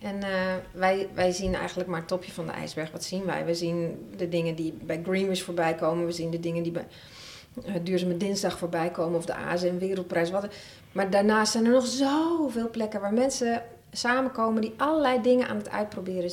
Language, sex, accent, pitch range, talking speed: Dutch, female, Dutch, 180-225 Hz, 200 wpm